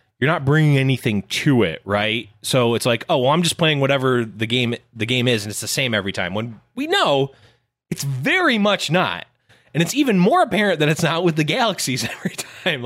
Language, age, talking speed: English, 20-39, 220 wpm